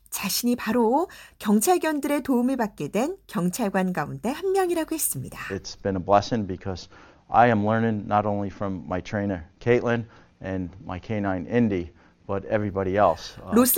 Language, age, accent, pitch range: Korean, 50-69, American, 175-275 Hz